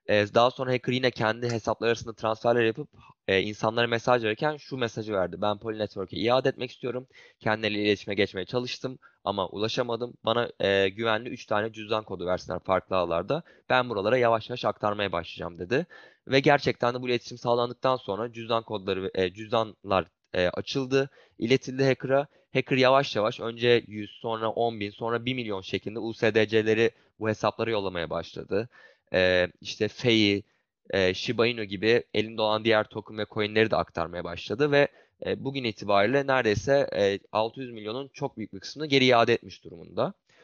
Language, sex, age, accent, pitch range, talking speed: Turkish, male, 20-39, native, 105-125 Hz, 155 wpm